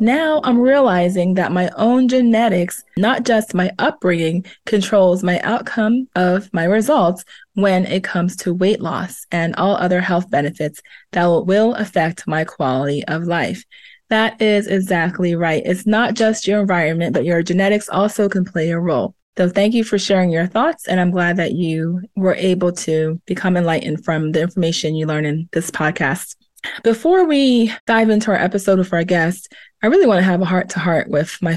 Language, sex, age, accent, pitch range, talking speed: English, female, 20-39, American, 170-215 Hz, 180 wpm